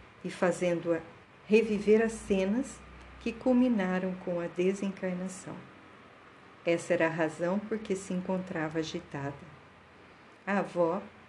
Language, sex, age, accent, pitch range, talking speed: Portuguese, female, 50-69, Brazilian, 165-205 Hz, 110 wpm